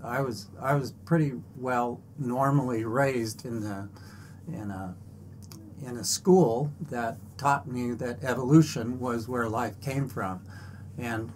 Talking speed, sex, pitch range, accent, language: 135 wpm, male, 105-130 Hz, American, English